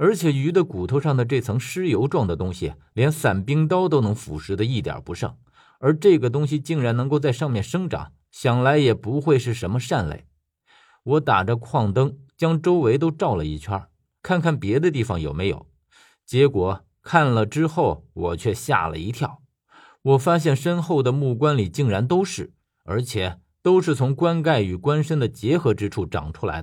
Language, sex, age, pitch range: Chinese, male, 50-69, 100-150 Hz